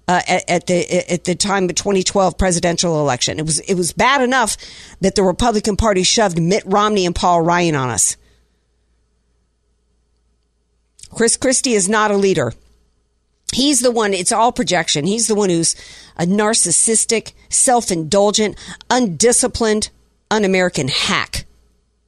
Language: English